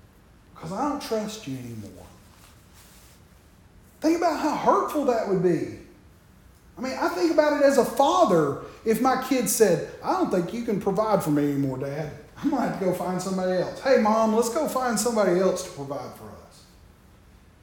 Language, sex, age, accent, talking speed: English, male, 40-59, American, 190 wpm